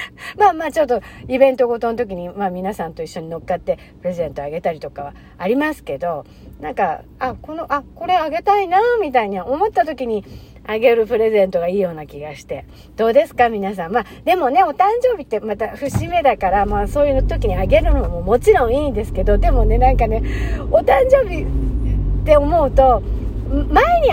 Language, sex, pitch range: Japanese, female, 195-310 Hz